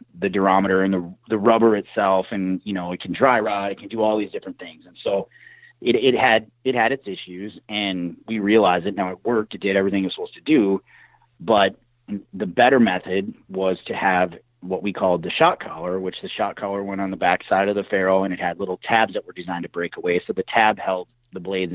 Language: English